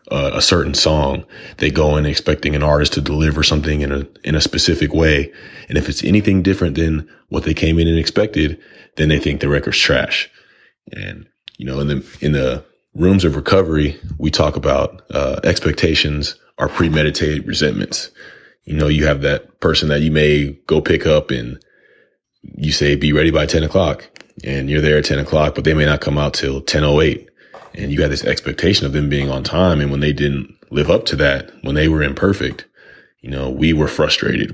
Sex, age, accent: male, 30-49, American